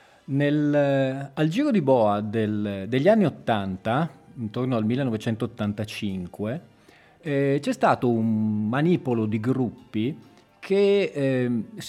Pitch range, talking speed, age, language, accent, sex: 110-130 Hz, 110 wpm, 30-49, Italian, native, male